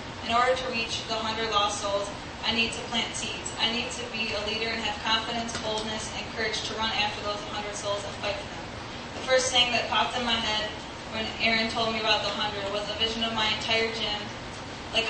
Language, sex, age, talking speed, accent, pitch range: English, female, 10-29, 230 wpm, American, 215-235 Hz